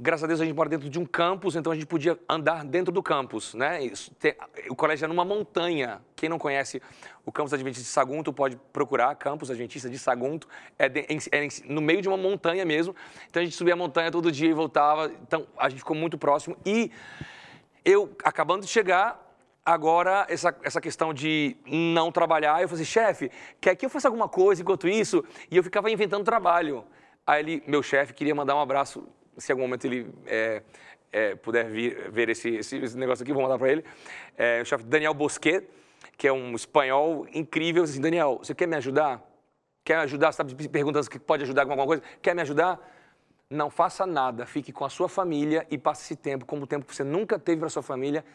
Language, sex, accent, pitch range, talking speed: Portuguese, male, Brazilian, 140-175 Hz, 210 wpm